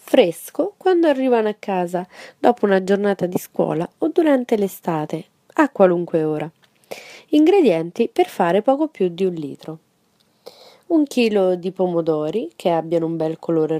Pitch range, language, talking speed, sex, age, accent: 170-230 Hz, Italian, 145 wpm, female, 30-49, native